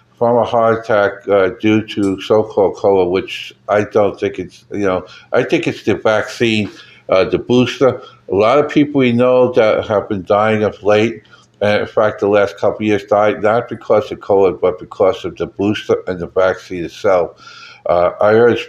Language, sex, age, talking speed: English, male, 60-79, 195 wpm